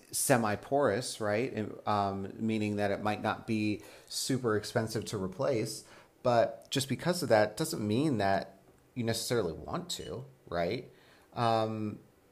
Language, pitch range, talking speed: English, 105-130 Hz, 140 wpm